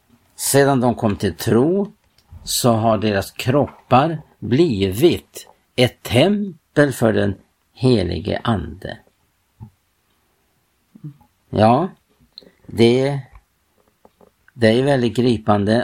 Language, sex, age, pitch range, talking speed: Swedish, male, 50-69, 105-130 Hz, 85 wpm